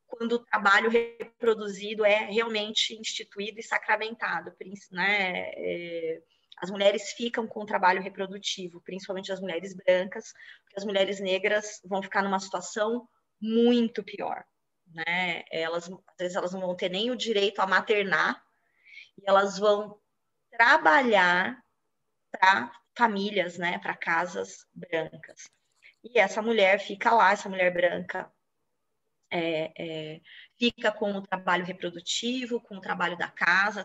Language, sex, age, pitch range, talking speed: Portuguese, female, 20-39, 185-225 Hz, 125 wpm